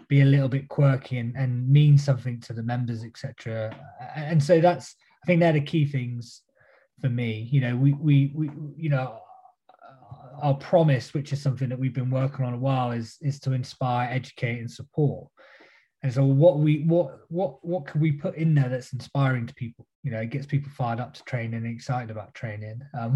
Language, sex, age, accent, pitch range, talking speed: English, male, 20-39, British, 120-145 Hz, 205 wpm